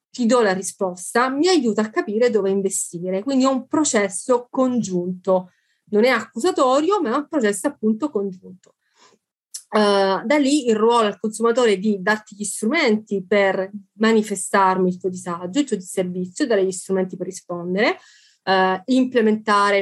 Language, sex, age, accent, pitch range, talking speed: Italian, female, 30-49, native, 195-245 Hz, 155 wpm